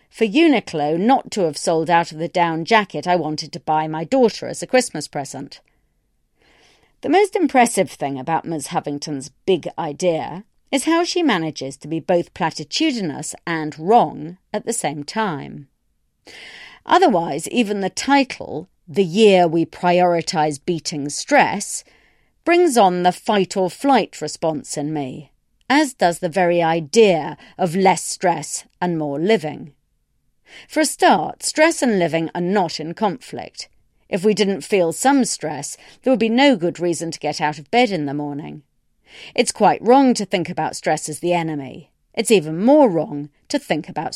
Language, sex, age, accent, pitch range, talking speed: English, female, 40-59, British, 155-230 Hz, 160 wpm